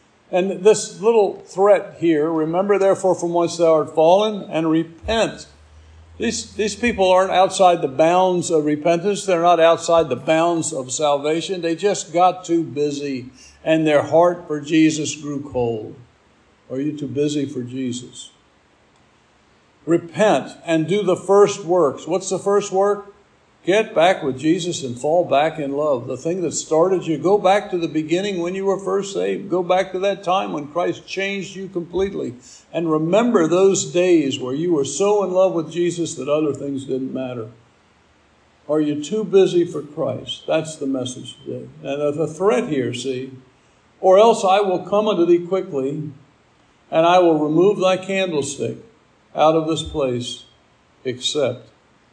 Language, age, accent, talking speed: English, 60-79, American, 165 wpm